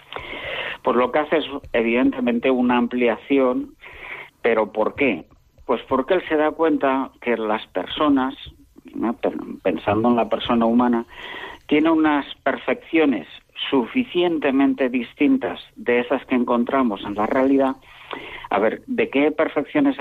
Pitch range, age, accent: 115-135 Hz, 50-69, Spanish